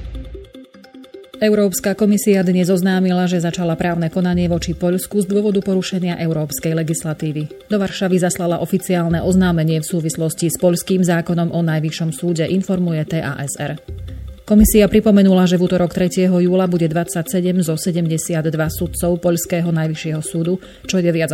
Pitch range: 165-185 Hz